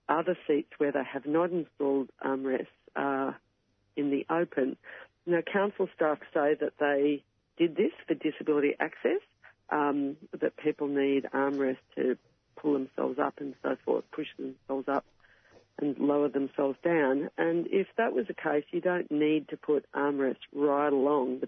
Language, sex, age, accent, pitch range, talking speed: English, female, 50-69, Australian, 140-155 Hz, 160 wpm